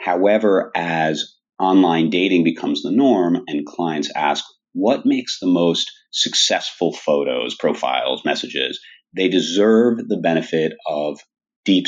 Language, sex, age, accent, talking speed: English, male, 40-59, American, 120 wpm